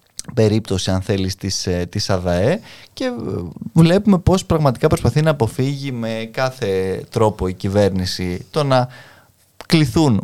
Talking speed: 115 wpm